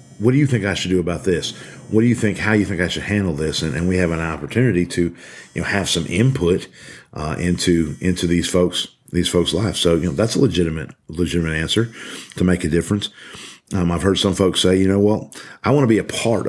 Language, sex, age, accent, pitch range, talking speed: English, male, 40-59, American, 85-100 Hz, 245 wpm